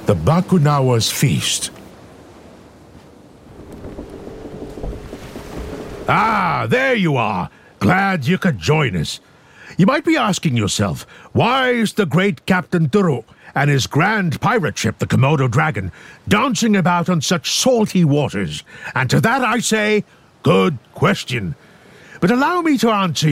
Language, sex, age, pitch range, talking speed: English, male, 60-79, 135-195 Hz, 125 wpm